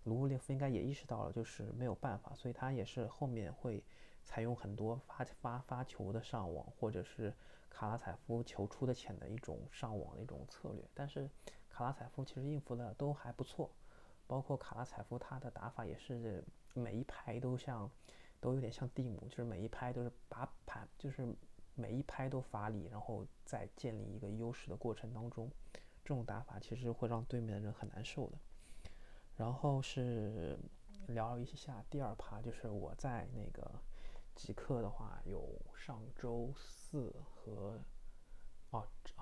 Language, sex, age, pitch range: Chinese, male, 20-39, 110-135 Hz